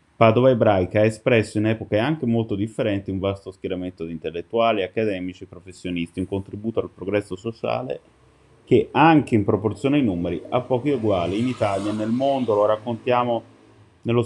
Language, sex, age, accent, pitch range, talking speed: Italian, male, 30-49, native, 95-115 Hz, 160 wpm